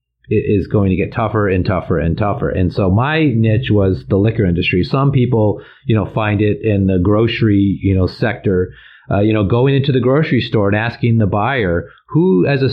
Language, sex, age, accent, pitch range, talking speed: English, male, 40-59, American, 100-130 Hz, 210 wpm